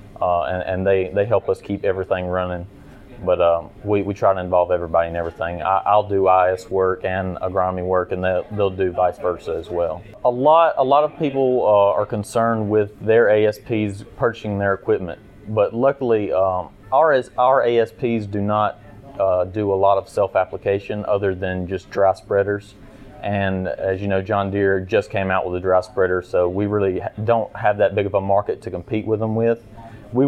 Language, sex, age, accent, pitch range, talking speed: English, male, 30-49, American, 95-110 Hz, 195 wpm